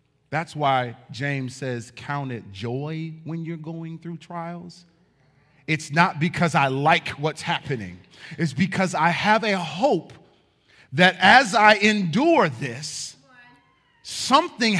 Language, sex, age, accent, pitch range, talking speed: English, male, 40-59, American, 130-175 Hz, 125 wpm